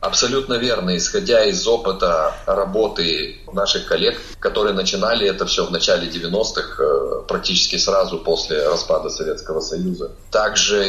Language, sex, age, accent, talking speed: Russian, male, 30-49, native, 120 wpm